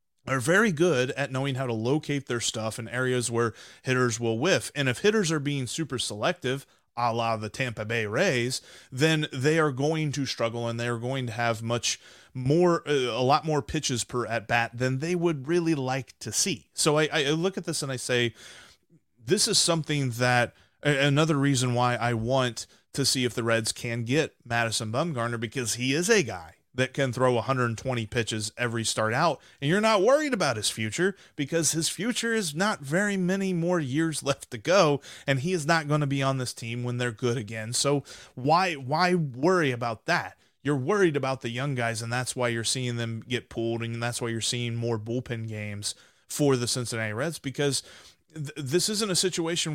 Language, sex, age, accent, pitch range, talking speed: English, male, 30-49, American, 120-155 Hz, 200 wpm